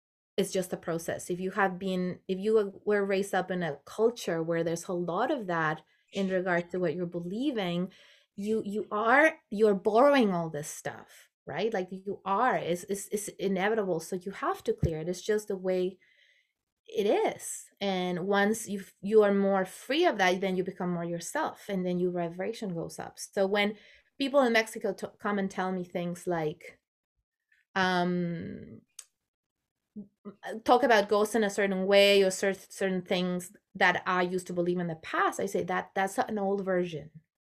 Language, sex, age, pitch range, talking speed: English, female, 20-39, 180-210 Hz, 180 wpm